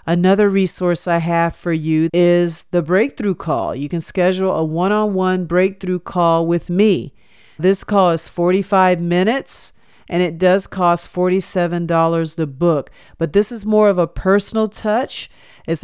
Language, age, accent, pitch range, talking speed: English, 40-59, American, 165-190 Hz, 150 wpm